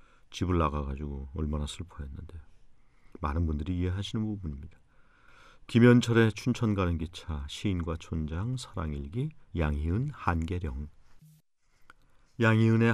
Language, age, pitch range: Korean, 40-59, 85-115 Hz